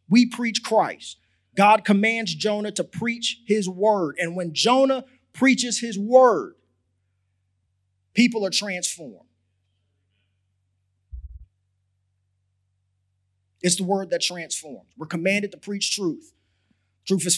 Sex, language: male, English